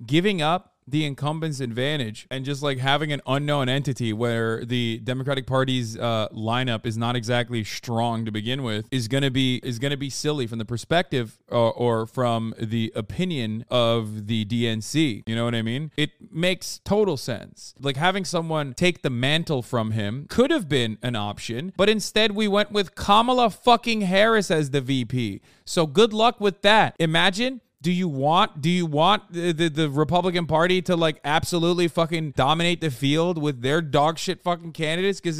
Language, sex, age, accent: English, male, 20-39, American